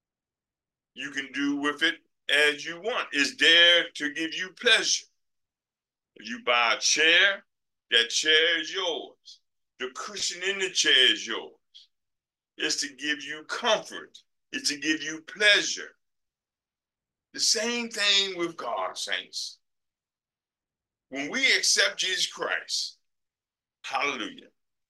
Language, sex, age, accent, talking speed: English, male, 50-69, American, 125 wpm